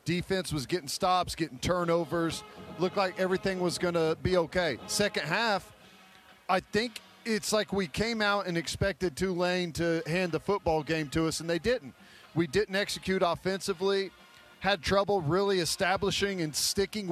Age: 40-59